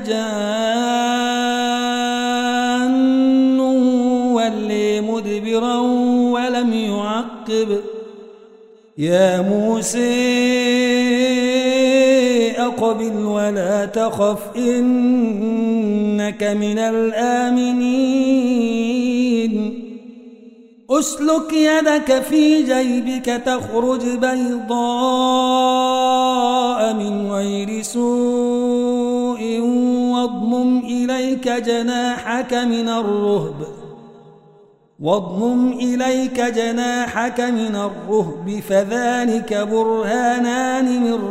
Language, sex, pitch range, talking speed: Arabic, male, 220-245 Hz, 45 wpm